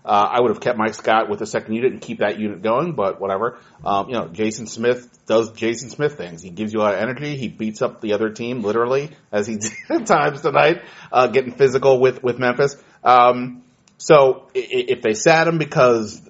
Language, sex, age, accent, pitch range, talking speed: English, male, 30-49, American, 110-140 Hz, 225 wpm